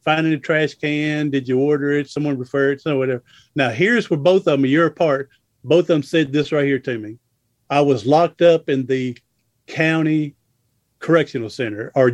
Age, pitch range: 50-69, 130-160 Hz